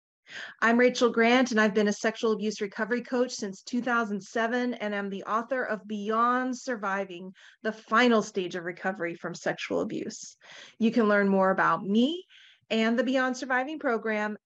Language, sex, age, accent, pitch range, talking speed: English, female, 30-49, American, 205-255 Hz, 160 wpm